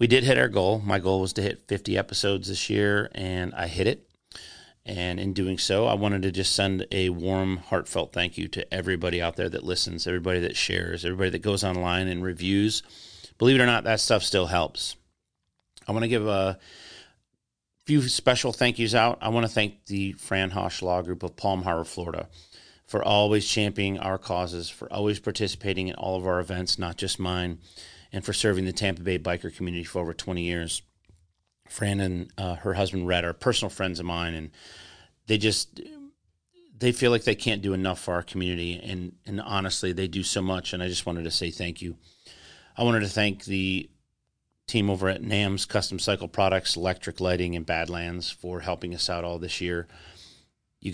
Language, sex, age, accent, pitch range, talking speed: English, male, 30-49, American, 90-100 Hz, 200 wpm